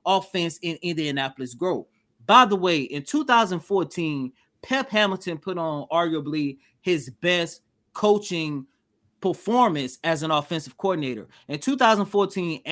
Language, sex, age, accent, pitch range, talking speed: English, male, 20-39, American, 160-210 Hz, 115 wpm